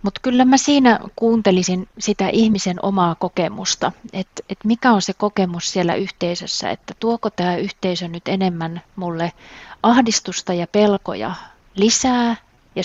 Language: Finnish